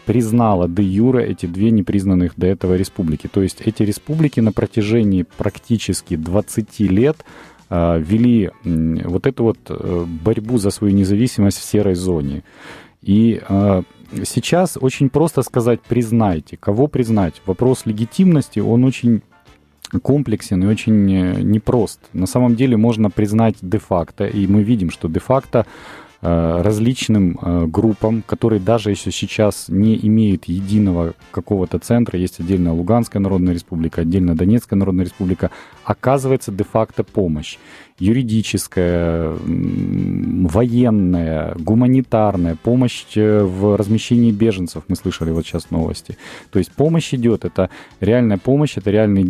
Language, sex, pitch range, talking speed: Russian, male, 90-115 Hz, 125 wpm